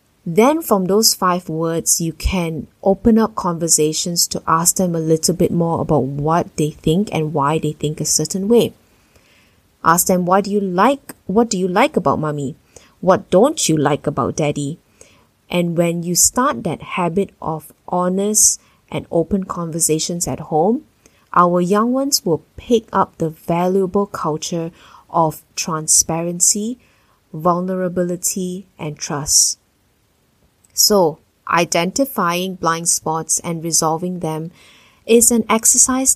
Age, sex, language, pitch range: 20-39, female, English, 160-200 Hz